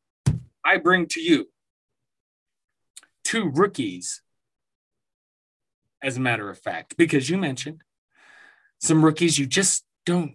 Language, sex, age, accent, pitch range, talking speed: English, male, 30-49, American, 130-175 Hz, 110 wpm